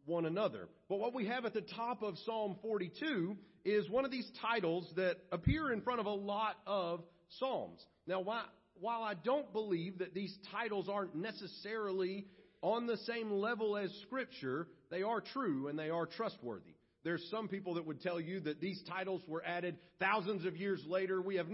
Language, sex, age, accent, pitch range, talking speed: English, male, 40-59, American, 160-215 Hz, 185 wpm